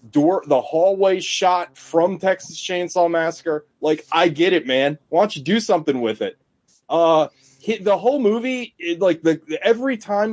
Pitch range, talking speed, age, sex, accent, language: 150-200 Hz, 175 wpm, 30-49, male, American, English